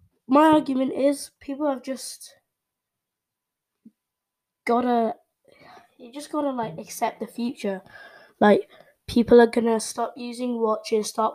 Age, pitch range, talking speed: 10-29, 200-245 Hz, 115 wpm